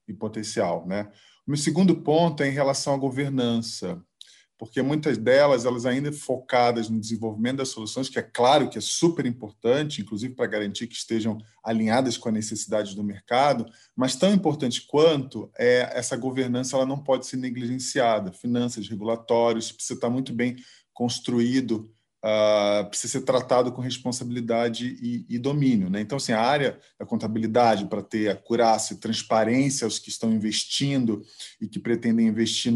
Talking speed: 165 wpm